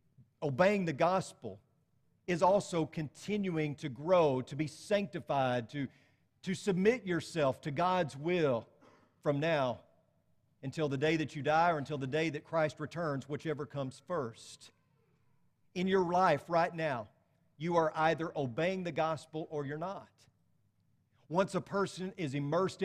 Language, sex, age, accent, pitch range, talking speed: English, male, 40-59, American, 145-190 Hz, 145 wpm